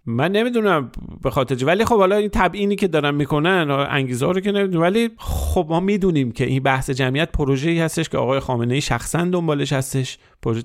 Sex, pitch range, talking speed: male, 130-170 Hz, 195 wpm